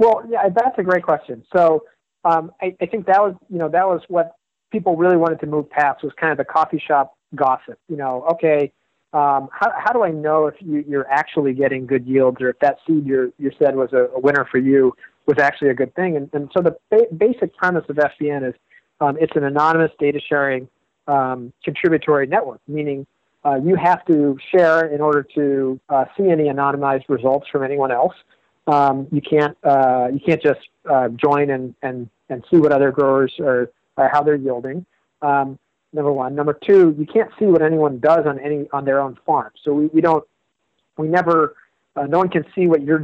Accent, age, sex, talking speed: American, 40-59, male, 210 wpm